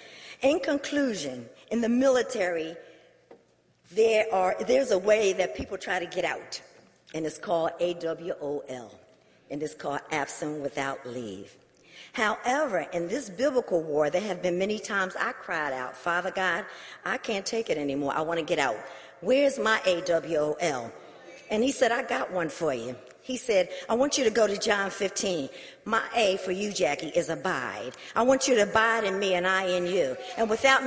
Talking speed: 175 wpm